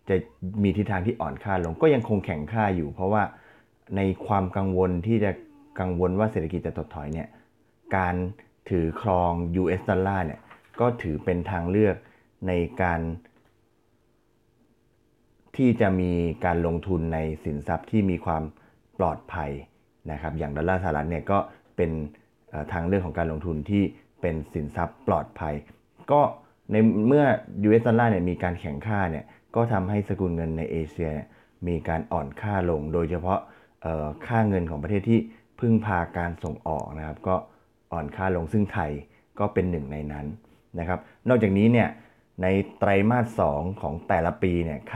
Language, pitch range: Thai, 80-105 Hz